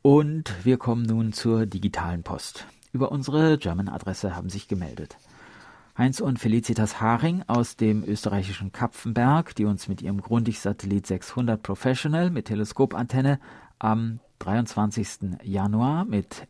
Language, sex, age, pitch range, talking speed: German, male, 40-59, 95-125 Hz, 125 wpm